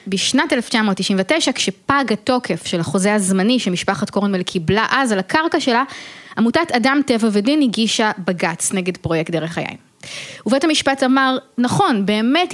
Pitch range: 200-285 Hz